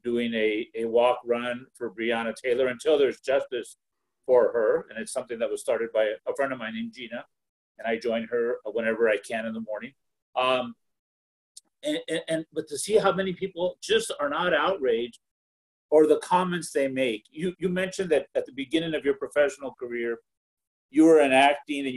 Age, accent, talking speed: 50-69, American, 195 wpm